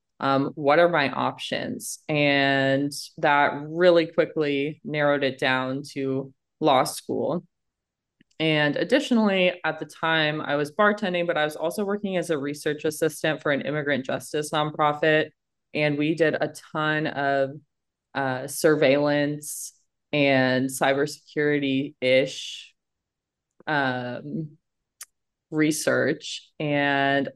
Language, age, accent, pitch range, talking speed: English, 20-39, American, 140-160 Hz, 110 wpm